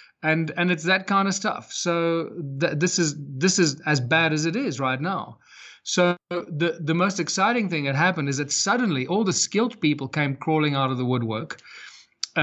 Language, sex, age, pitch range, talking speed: English, male, 30-49, 140-170 Hz, 205 wpm